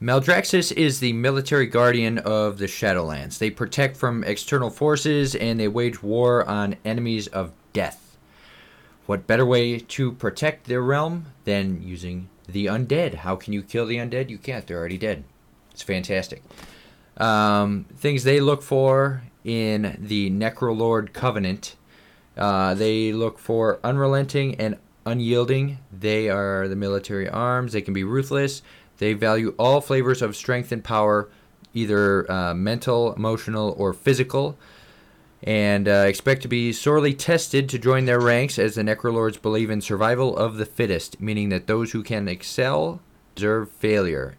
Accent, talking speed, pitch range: American, 150 wpm, 100-125 Hz